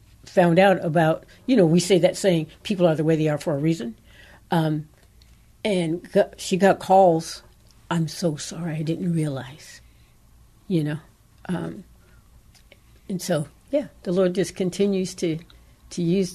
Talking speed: 155 wpm